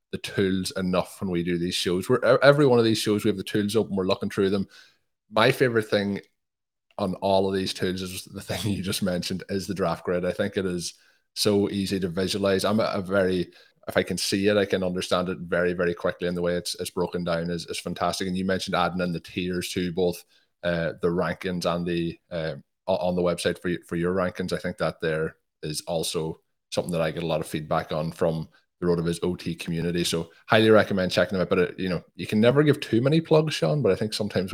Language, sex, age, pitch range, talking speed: English, male, 20-39, 90-100 Hz, 245 wpm